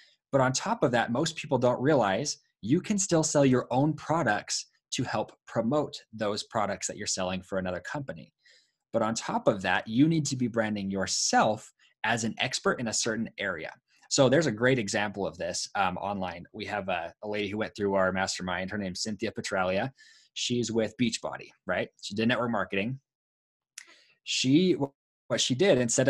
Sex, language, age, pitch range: male, English, 20-39, 105-135 Hz